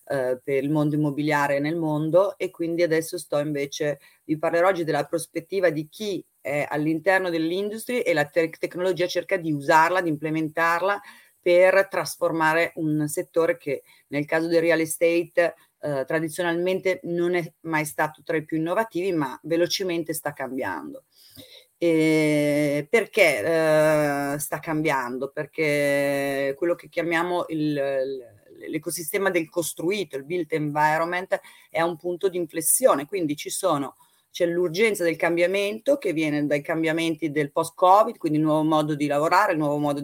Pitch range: 150-180 Hz